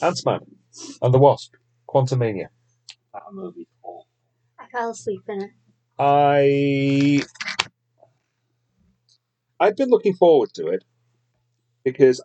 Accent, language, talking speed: British, English, 100 wpm